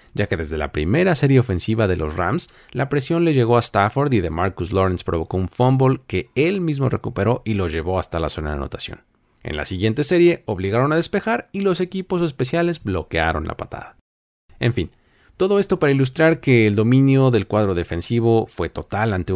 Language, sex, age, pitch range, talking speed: Spanish, male, 40-59, 90-130 Hz, 200 wpm